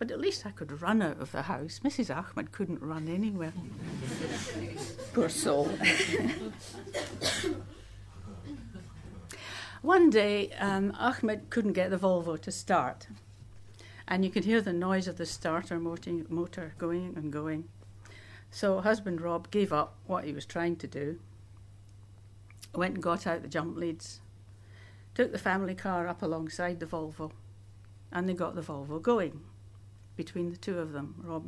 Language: English